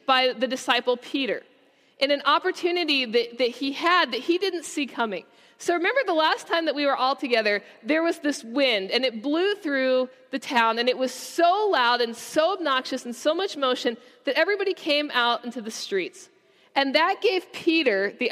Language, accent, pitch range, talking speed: English, American, 235-335 Hz, 195 wpm